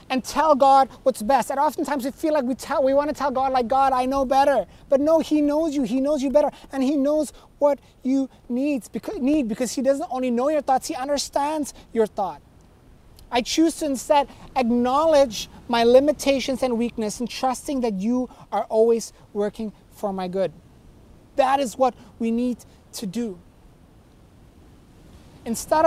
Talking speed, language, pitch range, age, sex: 175 wpm, English, 215-275 Hz, 30-49, male